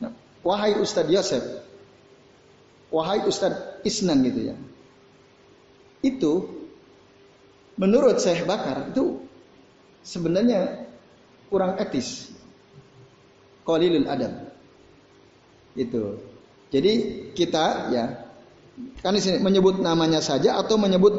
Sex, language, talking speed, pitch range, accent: male, Indonesian, 80 wpm, 165-205 Hz, native